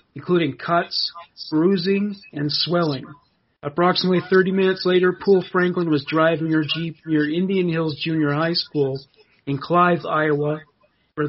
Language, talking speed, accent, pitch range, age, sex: English, 135 wpm, American, 150-175 Hz, 30-49, male